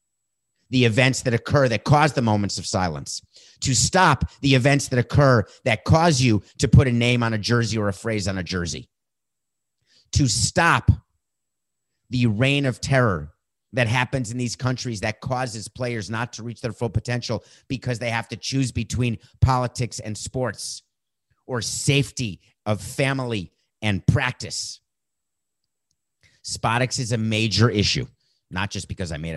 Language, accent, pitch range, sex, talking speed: English, American, 105-130 Hz, male, 155 wpm